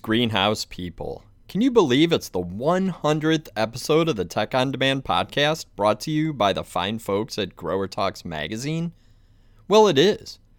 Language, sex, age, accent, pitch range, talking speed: English, male, 30-49, American, 100-150 Hz, 165 wpm